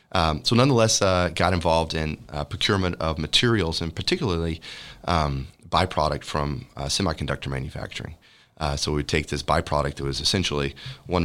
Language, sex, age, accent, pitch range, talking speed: English, male, 30-49, American, 75-85 Hz, 155 wpm